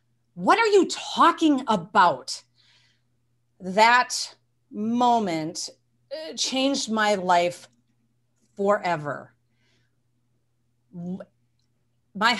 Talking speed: 60 wpm